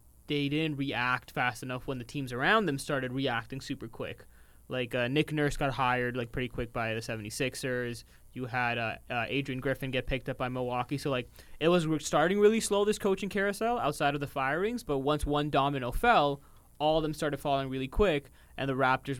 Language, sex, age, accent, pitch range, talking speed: English, male, 20-39, American, 125-150 Hz, 210 wpm